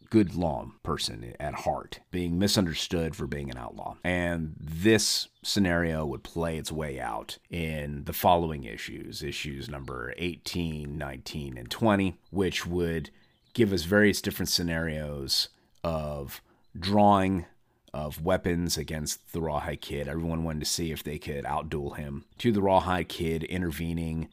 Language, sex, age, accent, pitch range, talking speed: English, male, 30-49, American, 75-90 Hz, 145 wpm